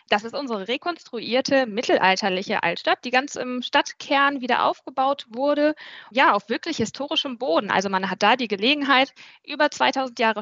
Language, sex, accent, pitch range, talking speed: German, female, German, 210-275 Hz, 155 wpm